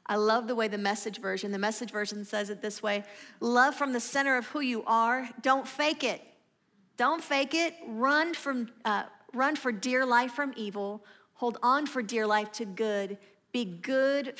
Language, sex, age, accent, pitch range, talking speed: English, female, 50-69, American, 215-265 Hz, 190 wpm